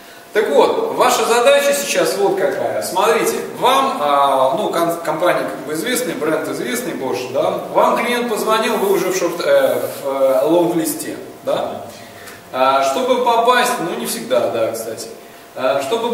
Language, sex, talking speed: Russian, male, 130 wpm